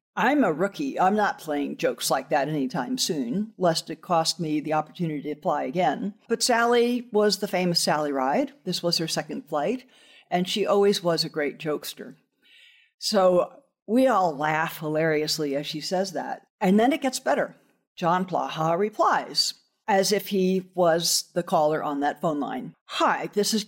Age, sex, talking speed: 60-79, female, 175 wpm